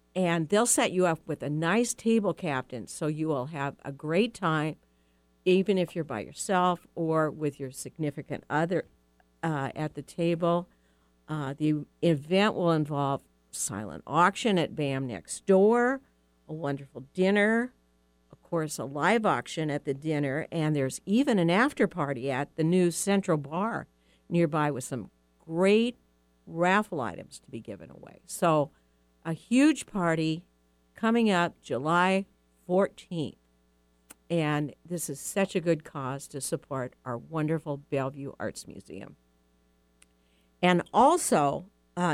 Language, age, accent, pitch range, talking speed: English, 50-69, American, 130-180 Hz, 140 wpm